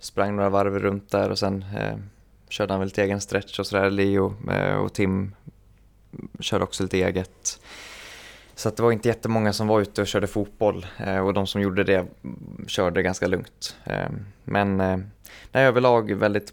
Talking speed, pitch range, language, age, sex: 190 wpm, 95-105 Hz, Swedish, 20-39, male